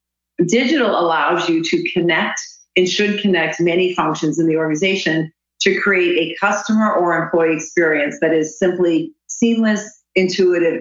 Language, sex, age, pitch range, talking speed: English, female, 40-59, 160-200 Hz, 140 wpm